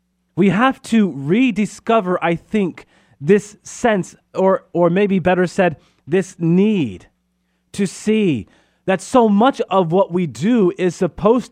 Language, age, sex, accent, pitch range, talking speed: English, 30-49, male, American, 125-180 Hz, 135 wpm